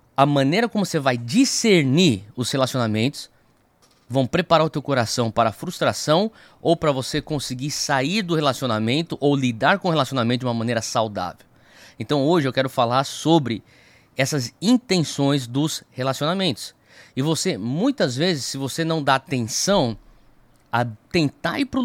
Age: 20-39